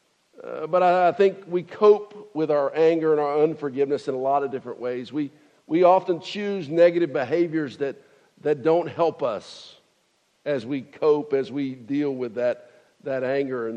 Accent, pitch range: American, 140-185 Hz